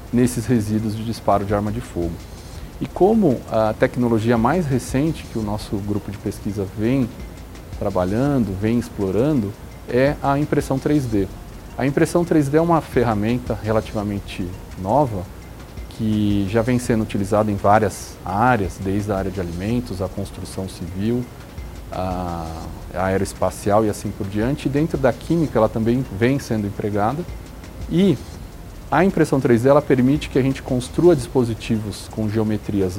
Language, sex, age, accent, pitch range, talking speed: Portuguese, male, 40-59, Brazilian, 100-125 Hz, 145 wpm